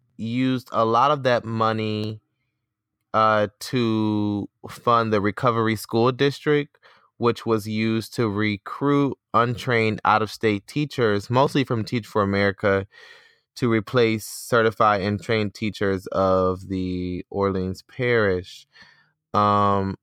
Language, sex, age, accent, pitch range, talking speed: English, male, 20-39, American, 100-120 Hz, 110 wpm